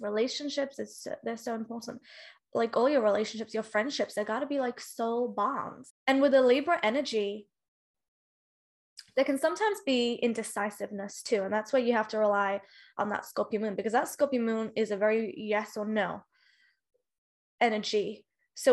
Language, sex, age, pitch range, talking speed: English, female, 10-29, 220-265 Hz, 165 wpm